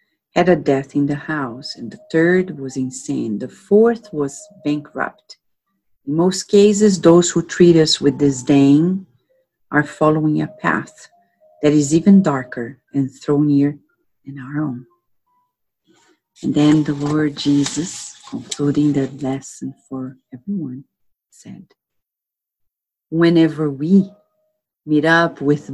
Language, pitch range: English, 140-200 Hz